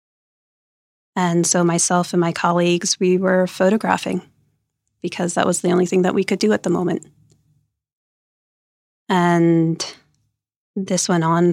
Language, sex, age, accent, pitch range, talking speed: English, female, 30-49, American, 160-180 Hz, 135 wpm